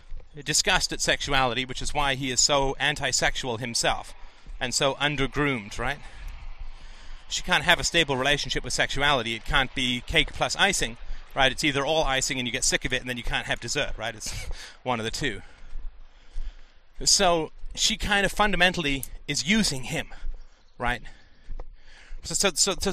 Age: 30-49